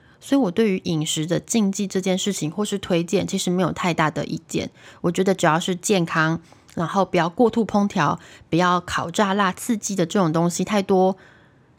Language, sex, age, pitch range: Chinese, female, 20-39, 165-210 Hz